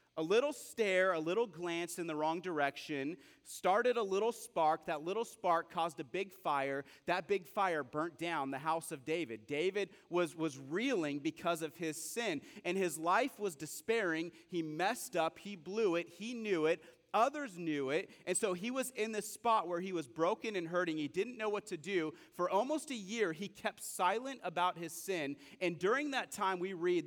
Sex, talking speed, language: male, 200 wpm, English